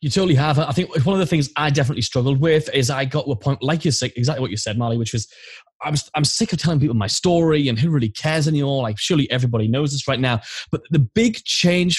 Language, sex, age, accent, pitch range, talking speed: English, male, 20-39, British, 125-170 Hz, 265 wpm